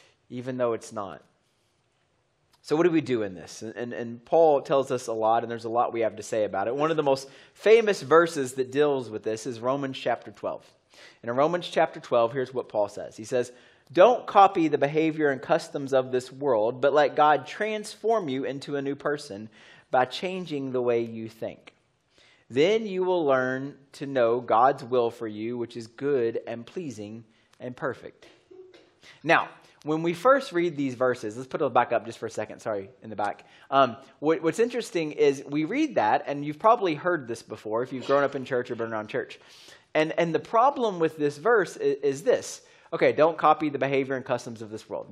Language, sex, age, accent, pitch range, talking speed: English, male, 30-49, American, 120-160 Hz, 210 wpm